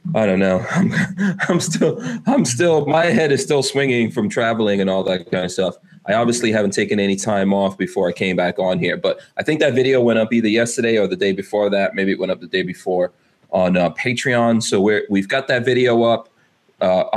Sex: male